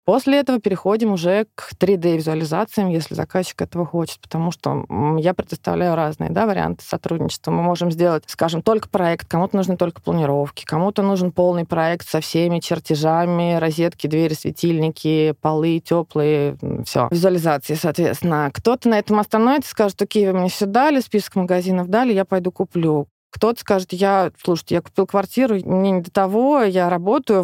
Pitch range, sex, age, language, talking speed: 165-200 Hz, female, 20-39, Russian, 160 wpm